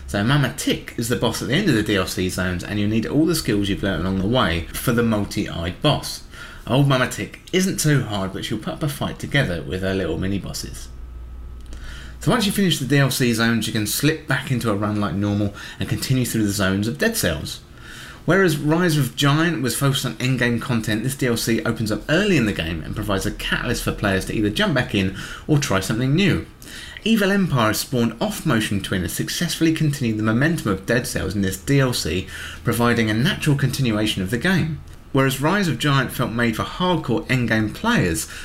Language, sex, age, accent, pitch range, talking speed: English, male, 30-49, British, 100-145 Hz, 215 wpm